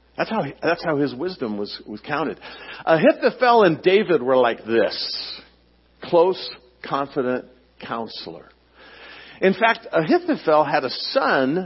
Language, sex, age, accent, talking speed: English, male, 50-69, American, 120 wpm